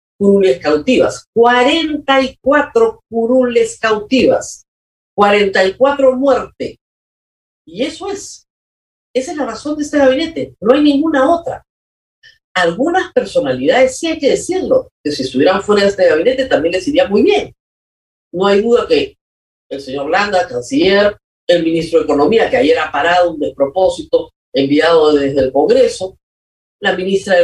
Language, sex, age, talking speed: Spanish, female, 40-59, 150 wpm